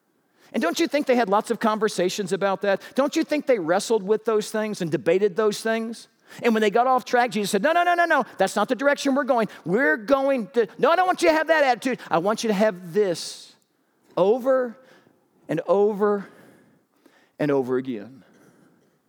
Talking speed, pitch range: 210 wpm, 160-245 Hz